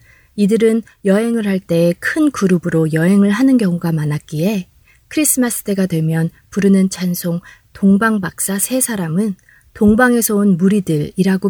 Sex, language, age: female, Korean, 20-39